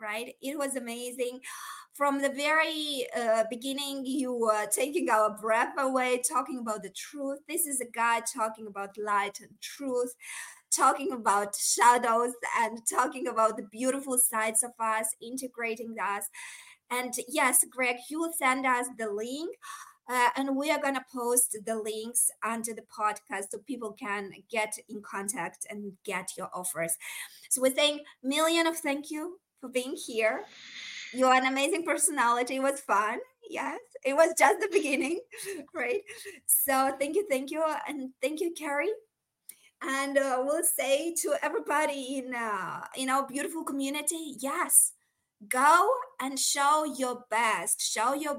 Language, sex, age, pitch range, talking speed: English, female, 20-39, 230-295 Hz, 155 wpm